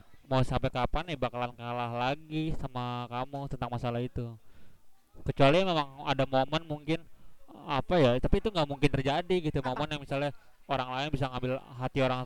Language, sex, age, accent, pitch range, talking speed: Indonesian, male, 20-39, native, 120-140 Hz, 165 wpm